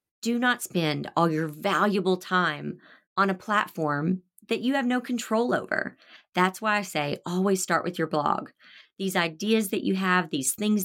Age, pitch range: 40-59, 160-220 Hz